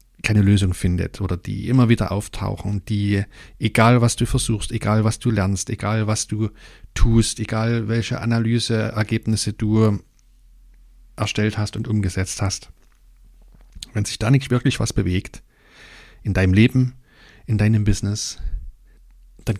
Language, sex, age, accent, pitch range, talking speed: German, male, 40-59, German, 100-115 Hz, 135 wpm